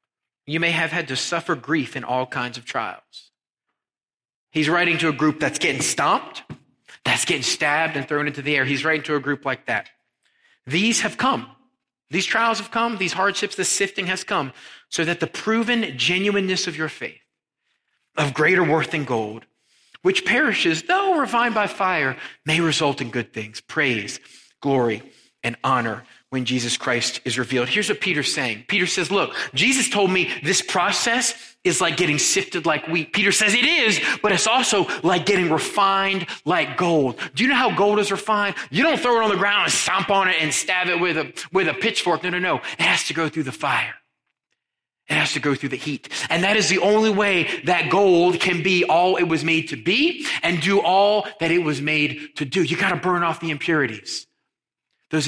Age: 30-49